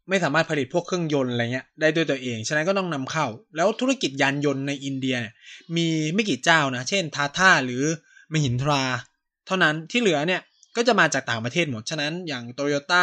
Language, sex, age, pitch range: Thai, male, 20-39, 125-165 Hz